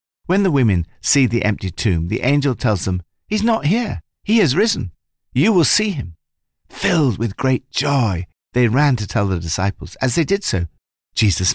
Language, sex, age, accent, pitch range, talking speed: English, male, 60-79, British, 85-145 Hz, 185 wpm